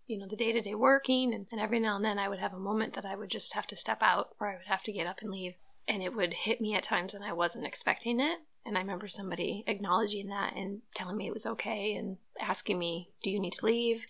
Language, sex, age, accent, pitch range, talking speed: English, female, 30-49, American, 200-235 Hz, 275 wpm